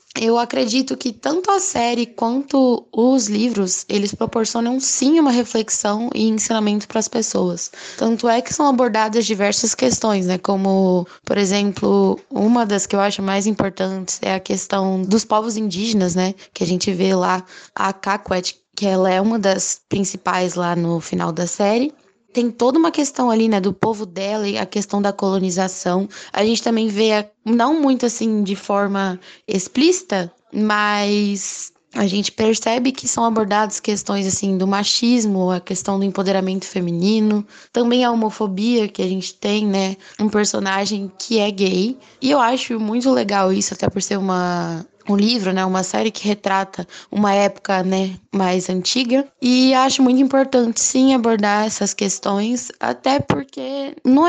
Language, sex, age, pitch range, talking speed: Portuguese, female, 10-29, 195-240 Hz, 165 wpm